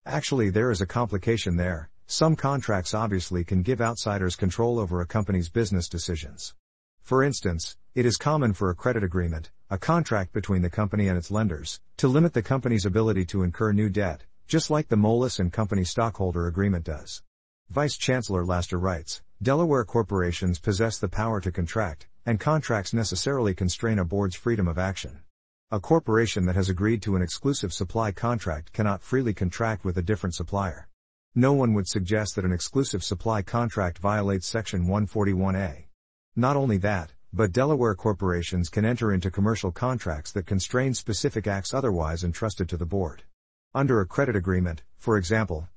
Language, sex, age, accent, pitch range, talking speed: English, male, 50-69, American, 90-115 Hz, 165 wpm